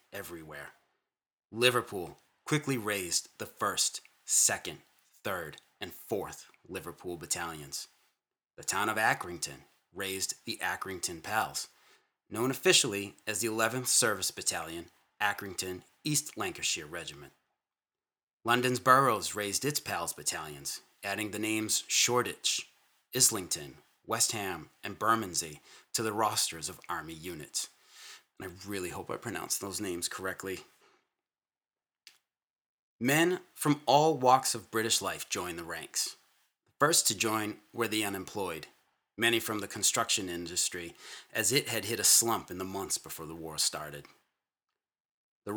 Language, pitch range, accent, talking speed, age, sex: English, 95-125 Hz, American, 125 wpm, 30-49, male